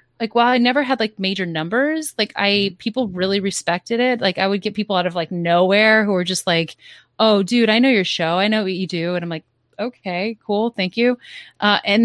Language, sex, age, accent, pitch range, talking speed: English, female, 20-39, American, 180-220 Hz, 235 wpm